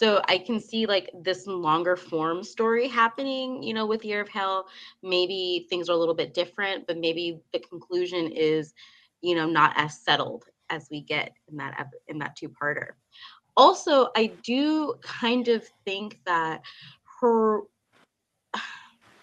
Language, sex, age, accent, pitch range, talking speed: English, female, 20-39, American, 155-205 Hz, 155 wpm